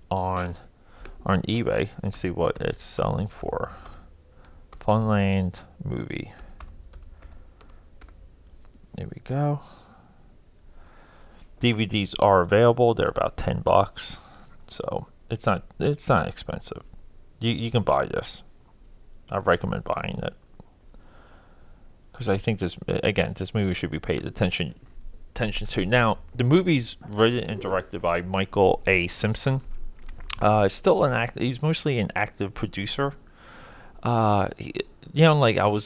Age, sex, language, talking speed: 20-39, male, English, 125 wpm